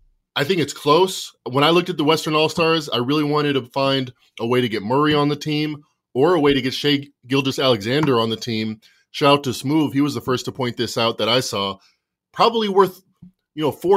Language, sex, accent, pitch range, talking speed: English, male, American, 130-165 Hz, 235 wpm